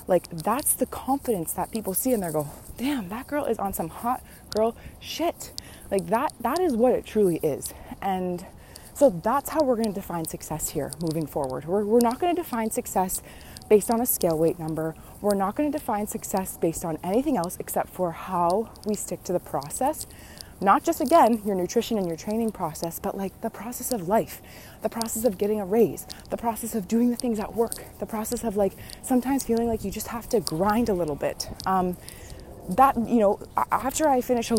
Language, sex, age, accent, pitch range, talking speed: English, female, 20-39, American, 180-240 Hz, 205 wpm